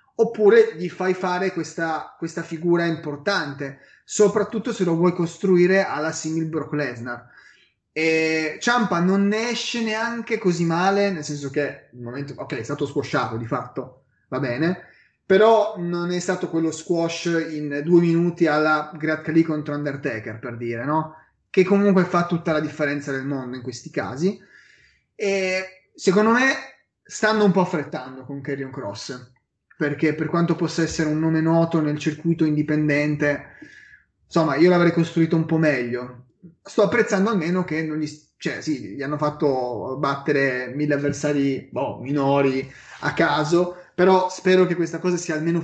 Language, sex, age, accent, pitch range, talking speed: Italian, male, 30-49, native, 145-180 Hz, 155 wpm